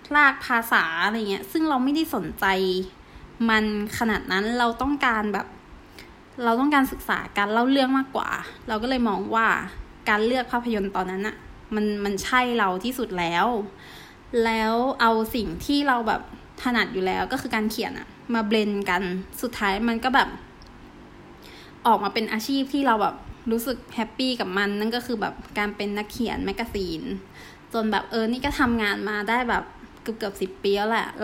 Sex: female